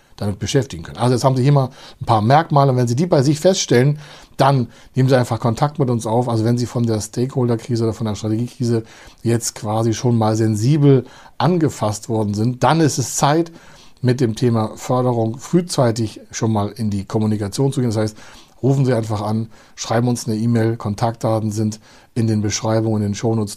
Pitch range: 105-125 Hz